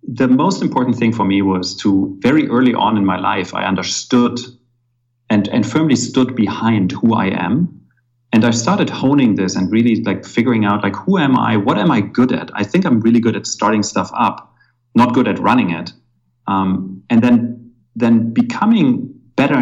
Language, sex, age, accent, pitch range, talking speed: English, male, 40-59, German, 100-120 Hz, 195 wpm